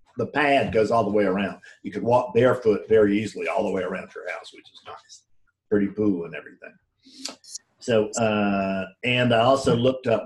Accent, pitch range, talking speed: American, 100-140 Hz, 195 wpm